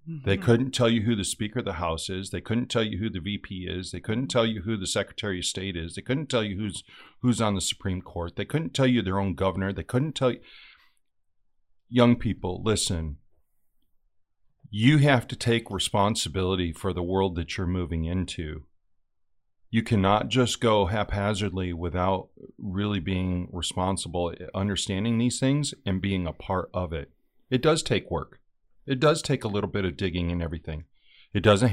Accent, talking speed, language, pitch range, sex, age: American, 185 wpm, English, 90-115 Hz, male, 40-59